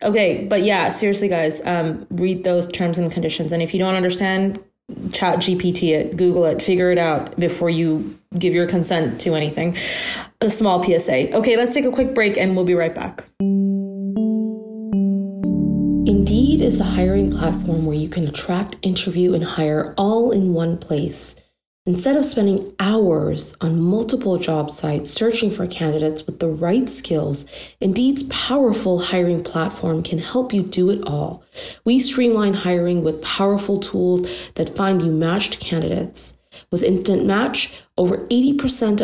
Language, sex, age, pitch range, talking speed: English, female, 30-49, 170-200 Hz, 155 wpm